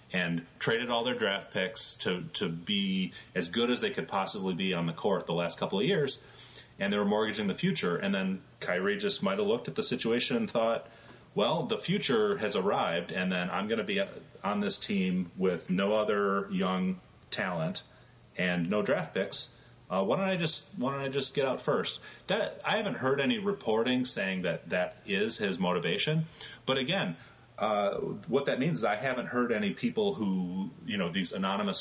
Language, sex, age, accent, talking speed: English, male, 30-49, American, 200 wpm